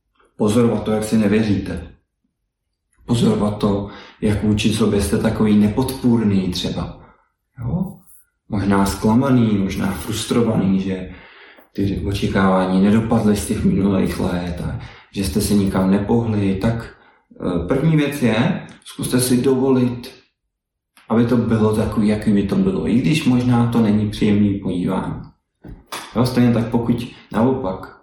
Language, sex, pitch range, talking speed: Czech, male, 100-120 Hz, 130 wpm